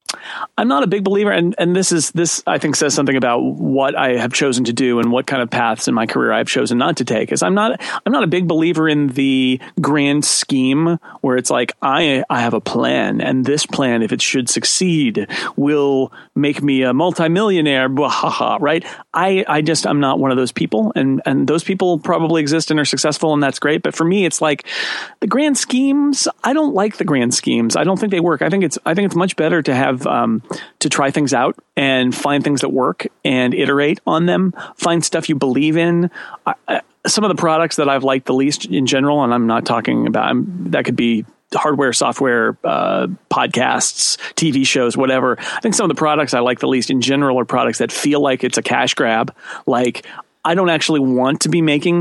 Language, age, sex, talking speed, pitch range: English, 40-59, male, 225 wpm, 130-170 Hz